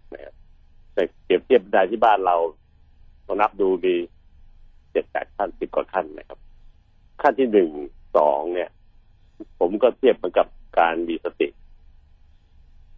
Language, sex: Thai, male